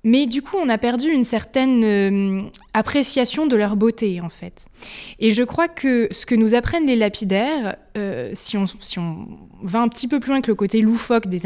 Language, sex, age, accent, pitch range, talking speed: French, female, 20-39, French, 190-240 Hz, 215 wpm